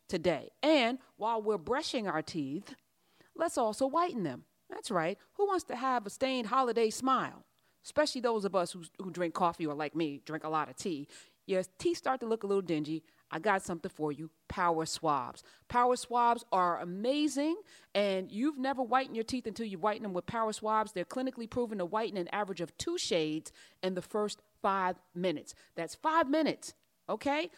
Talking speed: 190 wpm